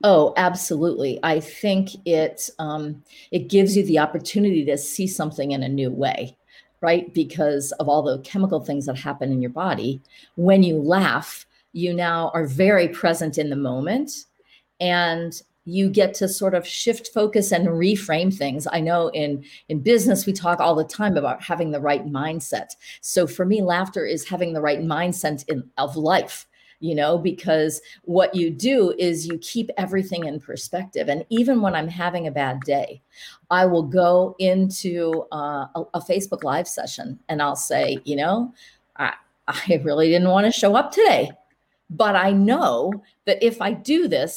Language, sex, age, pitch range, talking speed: English, female, 50-69, 155-195 Hz, 175 wpm